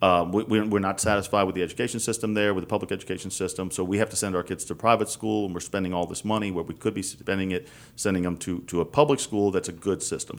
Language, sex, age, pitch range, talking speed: English, male, 40-59, 95-115 Hz, 270 wpm